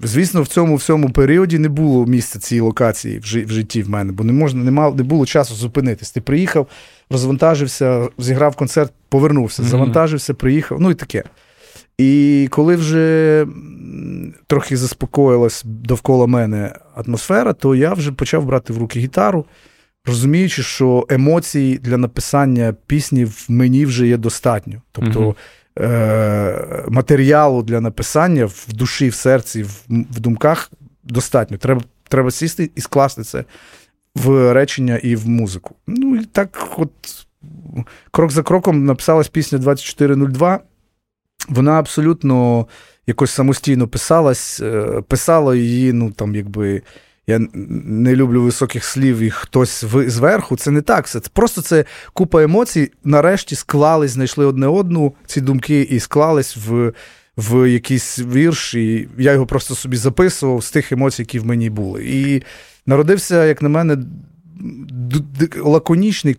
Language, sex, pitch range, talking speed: Ukrainian, male, 120-150 Hz, 135 wpm